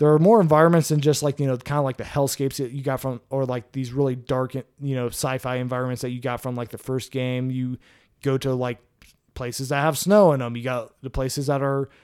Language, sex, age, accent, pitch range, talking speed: English, male, 20-39, American, 125-145 Hz, 260 wpm